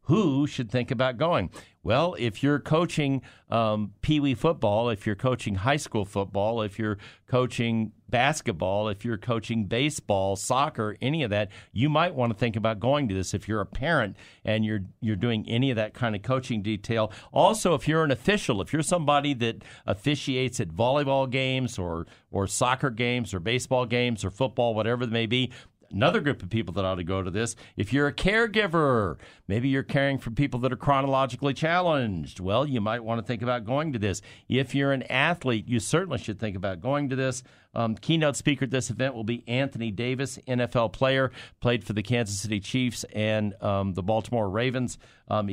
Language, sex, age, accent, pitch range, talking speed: English, male, 50-69, American, 105-135 Hz, 195 wpm